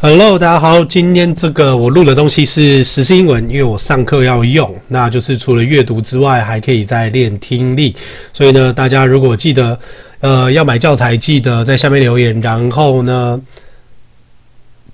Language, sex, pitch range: Chinese, male, 120-155 Hz